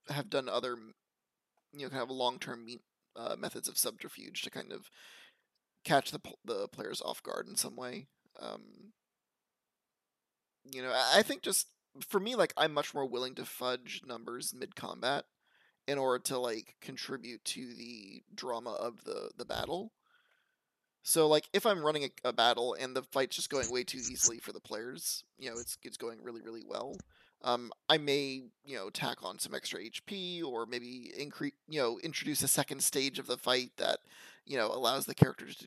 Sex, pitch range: male, 125-155 Hz